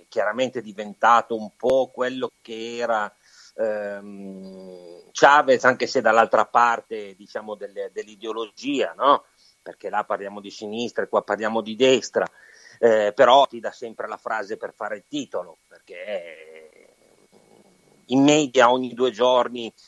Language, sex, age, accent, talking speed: Italian, male, 40-59, native, 135 wpm